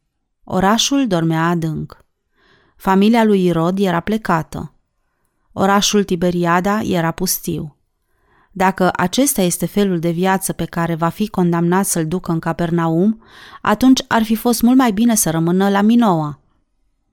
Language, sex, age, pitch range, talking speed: Romanian, female, 30-49, 170-215 Hz, 135 wpm